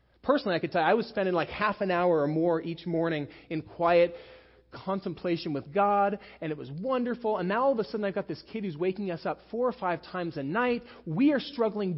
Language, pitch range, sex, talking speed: English, 145-200 Hz, male, 240 wpm